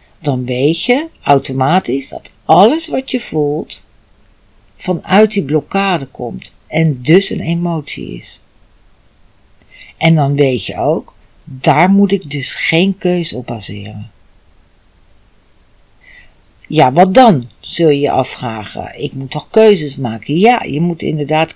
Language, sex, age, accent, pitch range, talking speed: Dutch, female, 50-69, Dutch, 125-175 Hz, 130 wpm